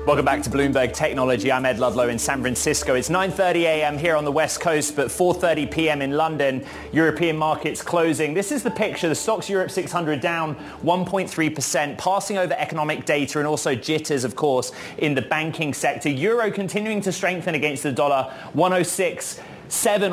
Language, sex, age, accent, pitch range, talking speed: English, male, 30-49, British, 145-180 Hz, 175 wpm